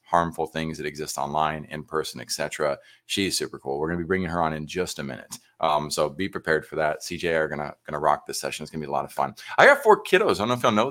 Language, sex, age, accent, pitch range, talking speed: English, male, 30-49, American, 80-100 Hz, 310 wpm